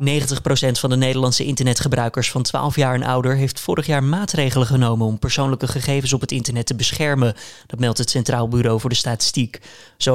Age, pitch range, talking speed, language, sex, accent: 20-39, 125-150 Hz, 190 wpm, Dutch, male, Dutch